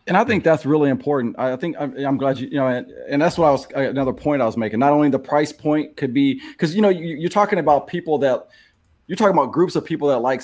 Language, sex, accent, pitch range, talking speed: English, male, American, 135-170 Hz, 275 wpm